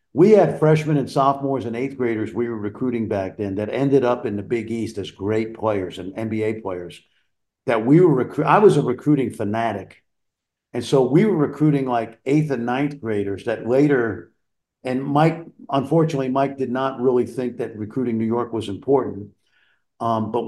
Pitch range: 105-135 Hz